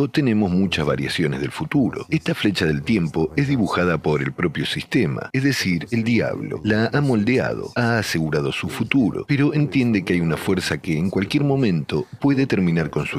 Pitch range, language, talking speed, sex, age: 90-130 Hz, Spanish, 180 wpm, male, 40-59